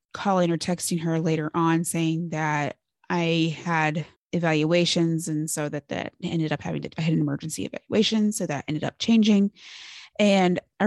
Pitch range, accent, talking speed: 165-215 Hz, American, 170 wpm